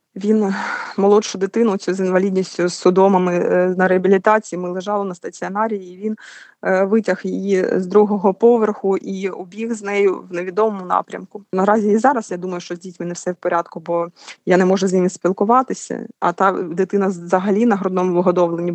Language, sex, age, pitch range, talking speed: Ukrainian, female, 20-39, 180-205 Hz, 175 wpm